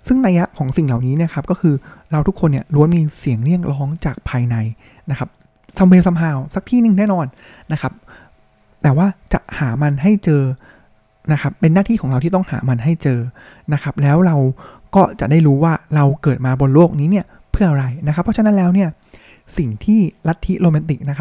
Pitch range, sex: 135-175 Hz, male